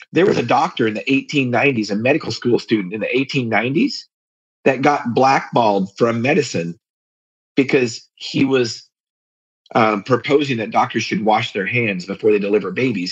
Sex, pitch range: male, 115-165 Hz